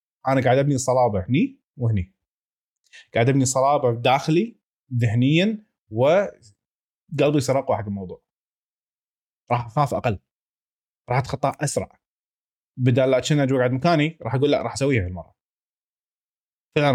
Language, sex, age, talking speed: Arabic, male, 20-39, 115 wpm